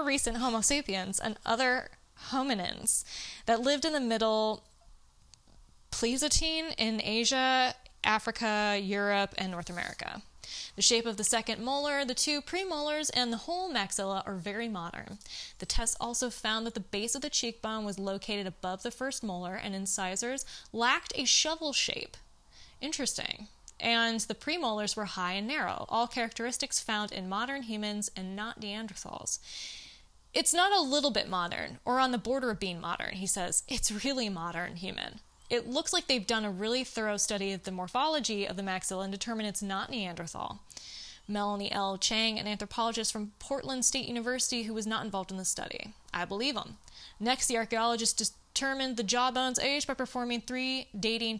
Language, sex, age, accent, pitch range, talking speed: English, female, 20-39, American, 195-255 Hz, 165 wpm